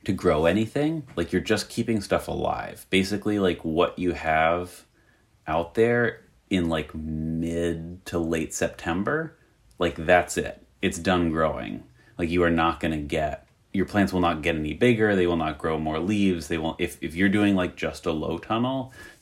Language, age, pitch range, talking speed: English, 30-49, 80-90 Hz, 185 wpm